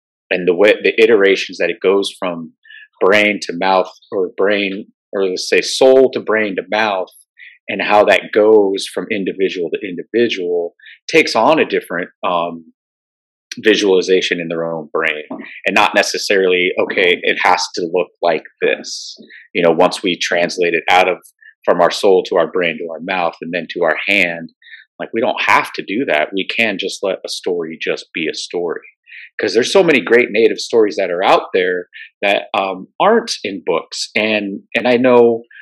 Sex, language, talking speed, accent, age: male, English, 185 wpm, American, 30-49